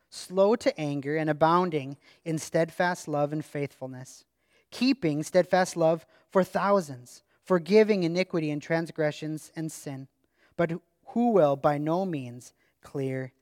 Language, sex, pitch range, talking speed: English, male, 160-205 Hz, 125 wpm